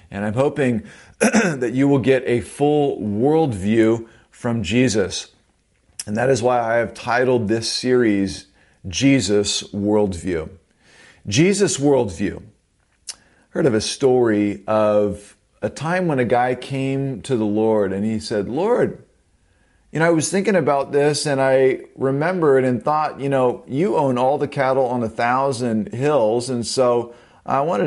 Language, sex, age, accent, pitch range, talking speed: English, male, 40-59, American, 110-135 Hz, 155 wpm